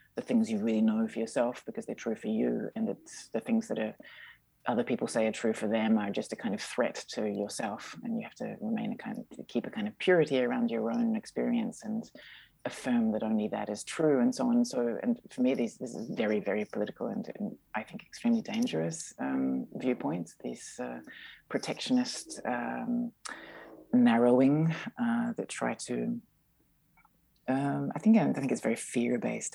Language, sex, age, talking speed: Dutch, female, 30-49, 195 wpm